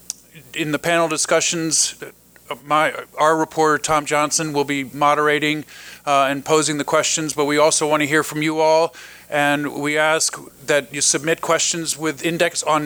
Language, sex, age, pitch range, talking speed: English, male, 40-59, 145-160 Hz, 170 wpm